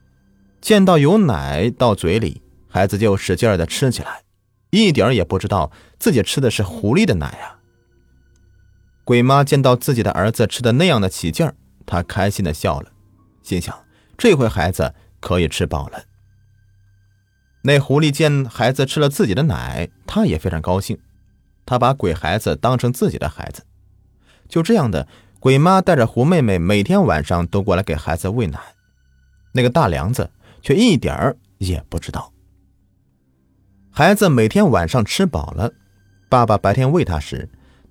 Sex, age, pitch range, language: male, 30-49, 90-120 Hz, Chinese